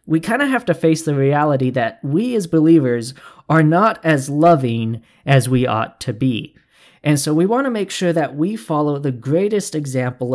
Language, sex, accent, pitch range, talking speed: English, male, American, 125-170 Hz, 195 wpm